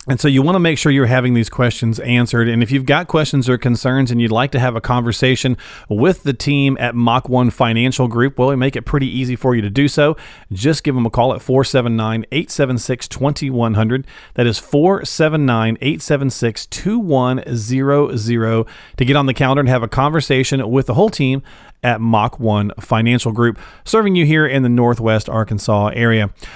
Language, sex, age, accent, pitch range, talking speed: English, male, 40-59, American, 115-145 Hz, 185 wpm